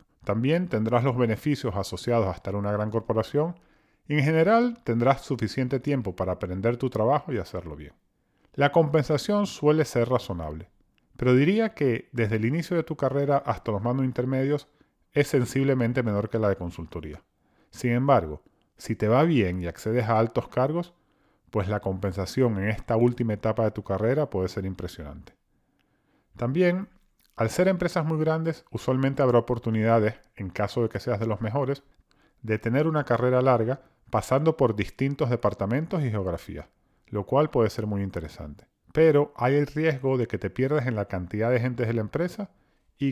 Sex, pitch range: male, 100-140 Hz